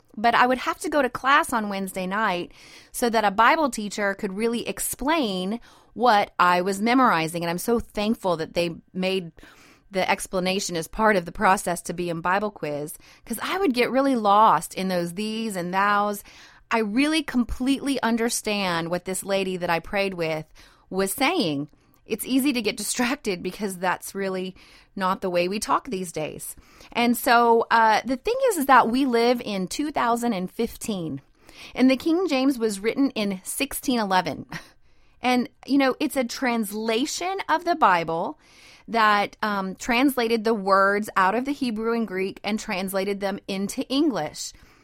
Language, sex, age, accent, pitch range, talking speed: English, female, 30-49, American, 185-245 Hz, 170 wpm